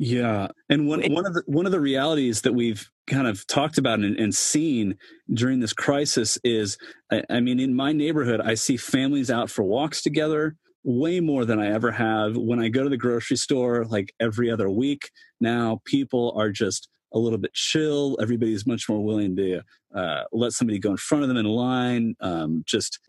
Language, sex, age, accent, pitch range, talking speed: English, male, 30-49, American, 100-125 Hz, 205 wpm